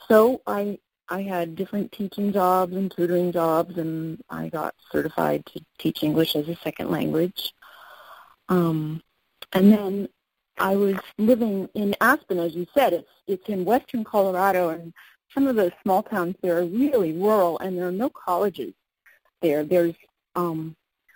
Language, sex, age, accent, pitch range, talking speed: English, female, 40-59, American, 165-205 Hz, 155 wpm